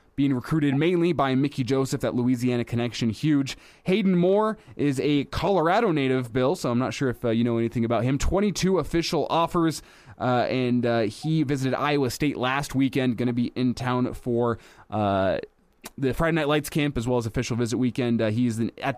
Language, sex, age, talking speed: English, male, 20-39, 195 wpm